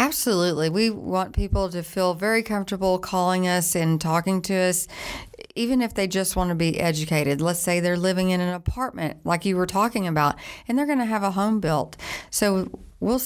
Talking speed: 200 wpm